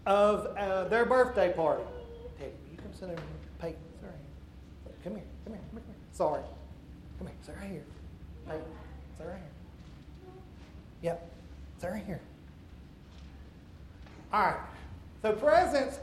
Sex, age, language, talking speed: male, 40-59, English, 140 wpm